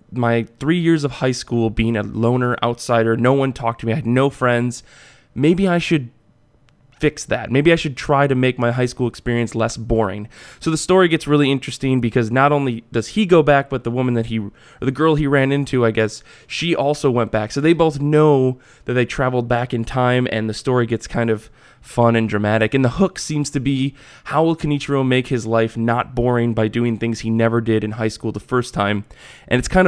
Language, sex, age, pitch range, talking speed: English, male, 20-39, 115-140 Hz, 230 wpm